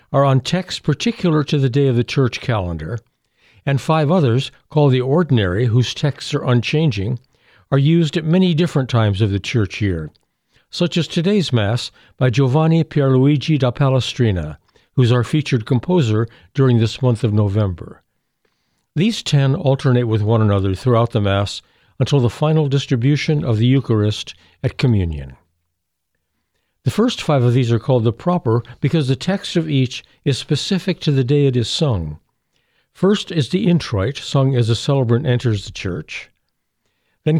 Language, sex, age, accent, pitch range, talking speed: English, male, 60-79, American, 115-145 Hz, 165 wpm